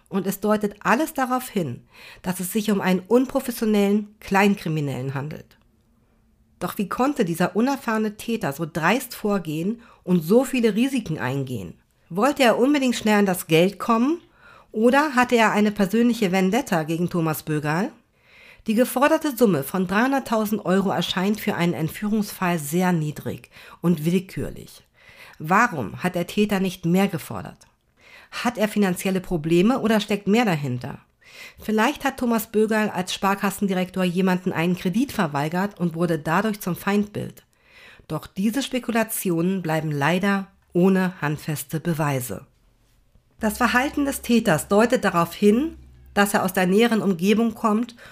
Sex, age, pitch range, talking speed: female, 50-69, 170-225 Hz, 140 wpm